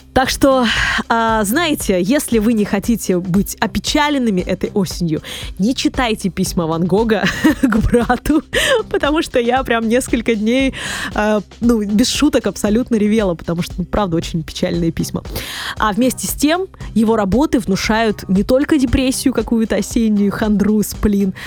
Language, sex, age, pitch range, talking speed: Russian, female, 20-39, 195-240 Hz, 145 wpm